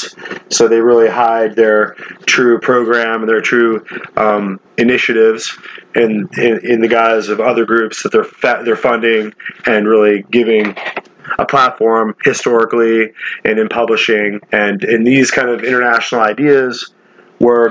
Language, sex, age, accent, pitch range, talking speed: English, male, 30-49, American, 110-120 Hz, 140 wpm